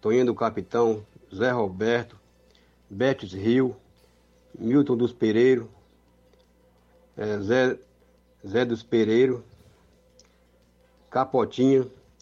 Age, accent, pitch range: 60-79, Brazilian, 105-130 Hz